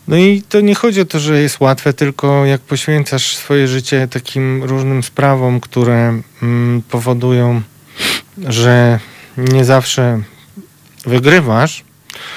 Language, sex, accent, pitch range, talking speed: Polish, male, native, 115-145 Hz, 115 wpm